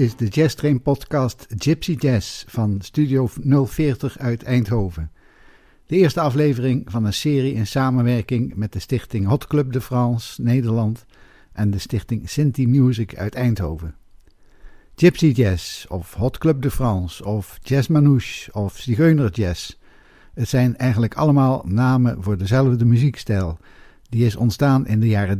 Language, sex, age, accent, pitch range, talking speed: Dutch, male, 60-79, Dutch, 105-135 Hz, 145 wpm